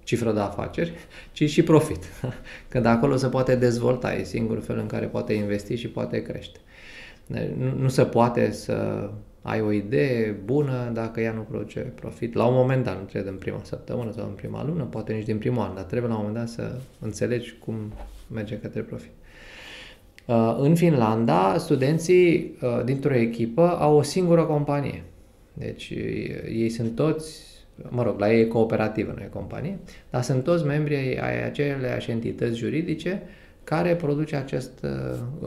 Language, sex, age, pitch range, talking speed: Romanian, male, 20-39, 110-145 Hz, 160 wpm